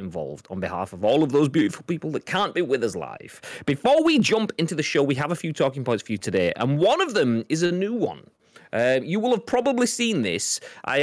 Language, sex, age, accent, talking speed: English, male, 30-49, British, 250 wpm